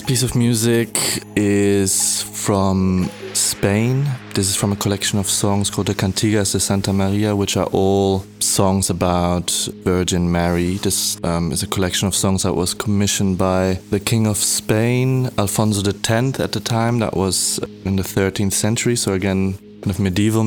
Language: English